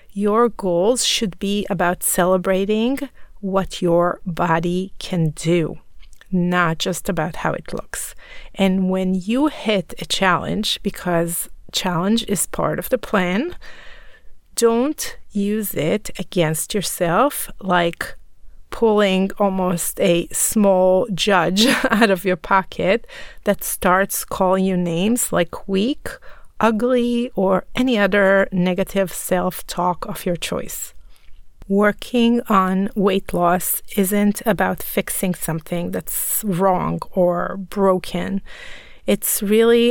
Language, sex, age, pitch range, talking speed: English, female, 30-49, 185-215 Hz, 115 wpm